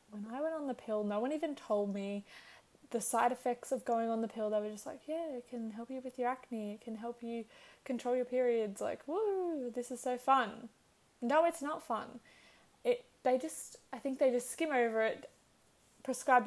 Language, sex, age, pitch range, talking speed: English, female, 10-29, 215-255 Hz, 215 wpm